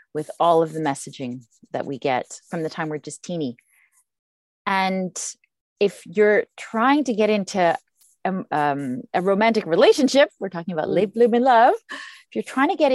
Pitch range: 155-220 Hz